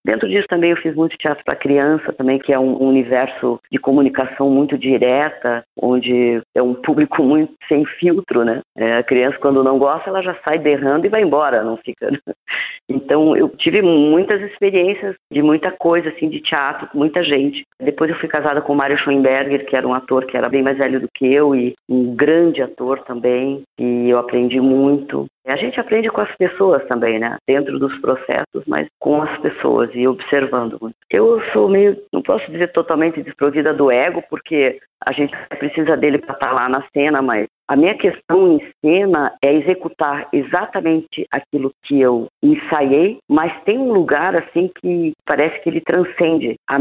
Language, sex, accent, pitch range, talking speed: Portuguese, female, Brazilian, 130-165 Hz, 185 wpm